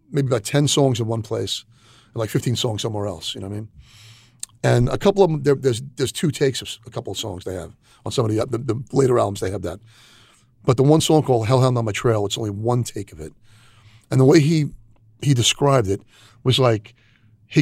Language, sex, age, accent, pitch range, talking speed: English, male, 40-59, American, 110-130 Hz, 245 wpm